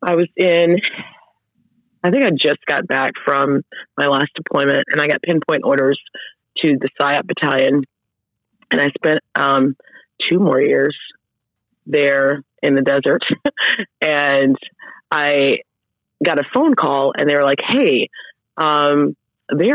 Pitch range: 135-160 Hz